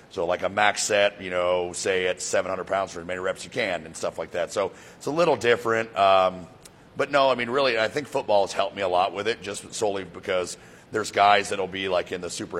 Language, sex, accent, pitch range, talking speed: English, male, American, 90-100 Hz, 255 wpm